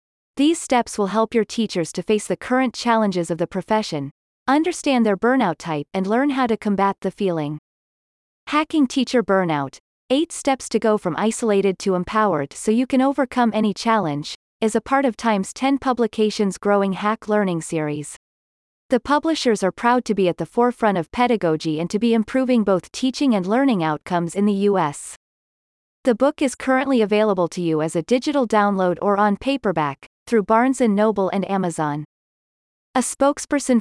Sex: female